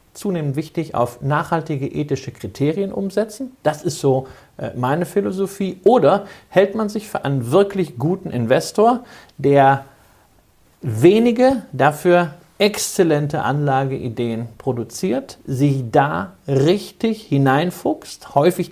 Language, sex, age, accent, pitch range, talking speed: German, male, 50-69, German, 120-170 Hz, 105 wpm